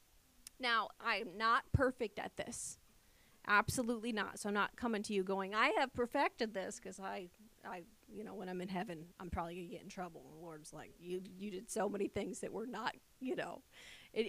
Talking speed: 215 wpm